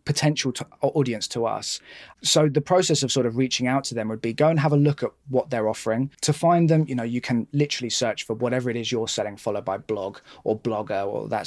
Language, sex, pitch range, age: English, male, 115-145 Hz, 20-39